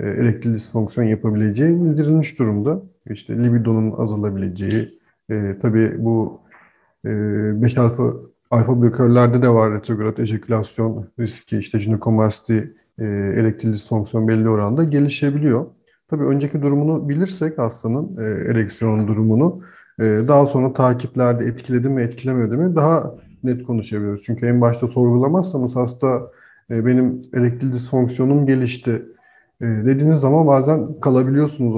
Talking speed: 115 wpm